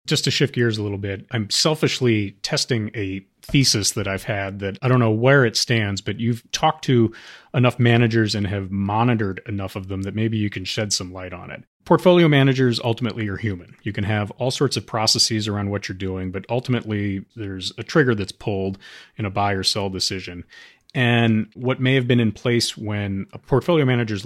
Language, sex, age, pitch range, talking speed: English, male, 30-49, 100-120 Hz, 205 wpm